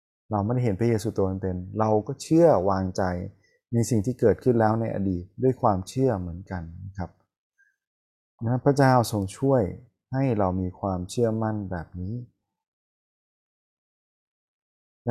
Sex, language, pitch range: male, Thai, 95-120 Hz